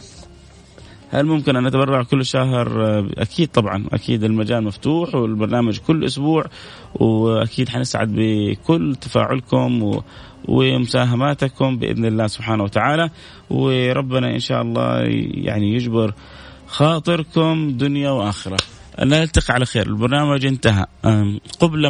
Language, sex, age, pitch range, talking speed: Arabic, male, 30-49, 110-140 Hz, 105 wpm